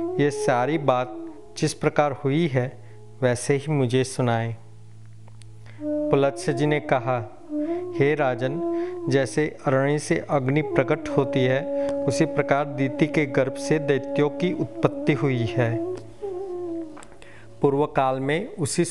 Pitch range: 130-160 Hz